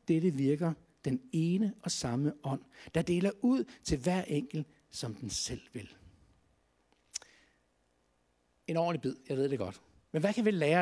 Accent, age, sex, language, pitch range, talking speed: native, 60-79, male, Danish, 130-195 Hz, 160 wpm